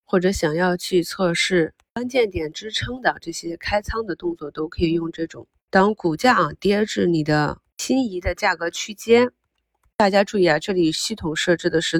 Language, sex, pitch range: Chinese, female, 155-195 Hz